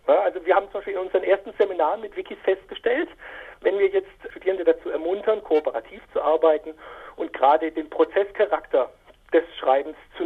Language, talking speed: German, 165 wpm